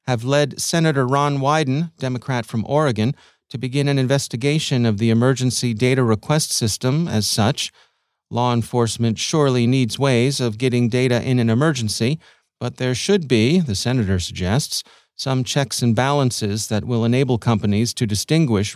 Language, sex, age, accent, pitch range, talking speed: English, male, 40-59, American, 110-140 Hz, 155 wpm